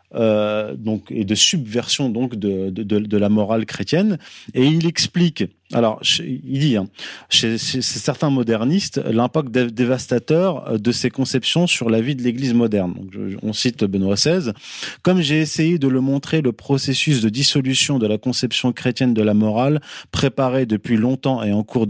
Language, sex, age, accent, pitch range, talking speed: French, male, 30-49, French, 110-150 Hz, 175 wpm